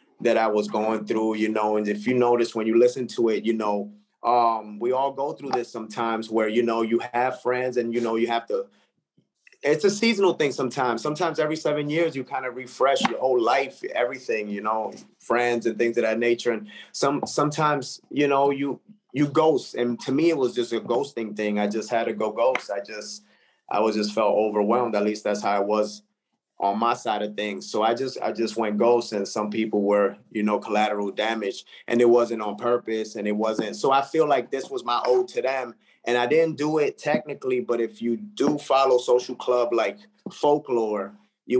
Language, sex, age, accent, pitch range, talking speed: English, male, 30-49, American, 110-130 Hz, 220 wpm